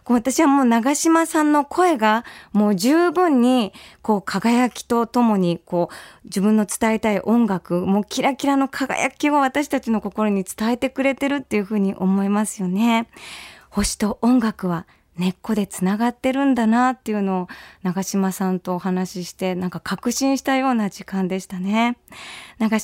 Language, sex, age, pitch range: Japanese, female, 20-39, 200-285 Hz